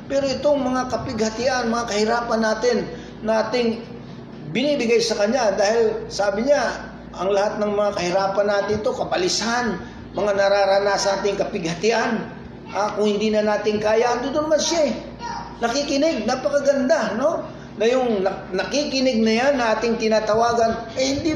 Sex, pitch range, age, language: male, 195-245 Hz, 40-59, English